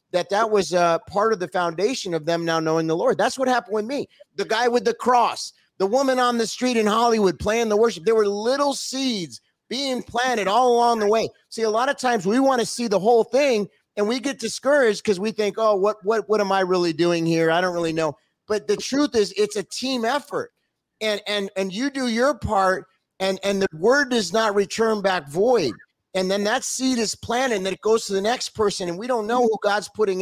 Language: English